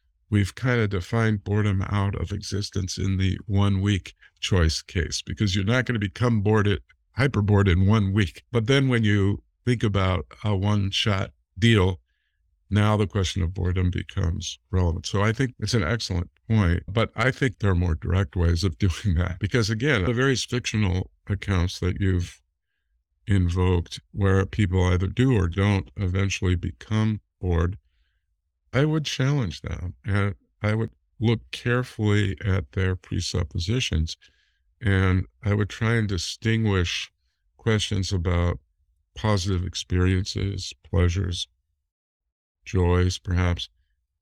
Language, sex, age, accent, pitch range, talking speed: English, male, 50-69, American, 90-105 Hz, 140 wpm